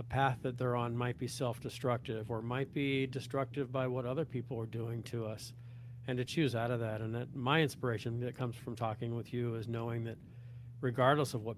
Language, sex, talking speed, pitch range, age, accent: English, male, 210 wpm, 115-130 Hz, 40-59, American